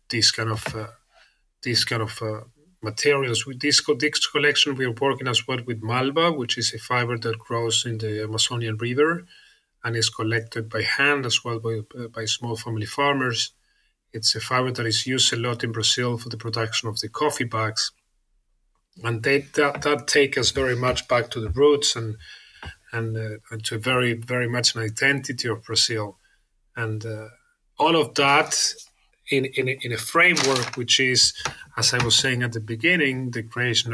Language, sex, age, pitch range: English, male, 30-49, 115-135 Hz